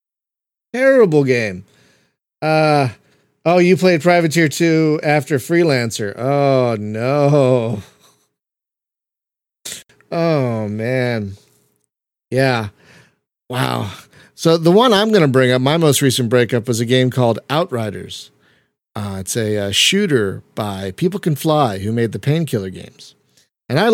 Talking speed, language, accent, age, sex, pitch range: 125 wpm, English, American, 40-59, male, 120-160 Hz